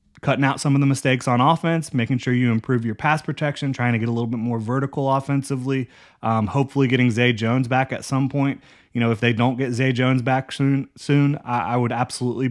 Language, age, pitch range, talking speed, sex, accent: English, 20-39, 115-130 Hz, 225 wpm, male, American